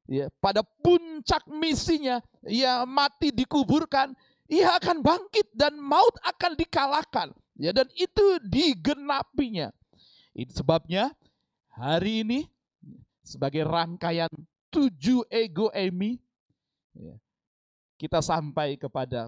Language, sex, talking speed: Indonesian, male, 105 wpm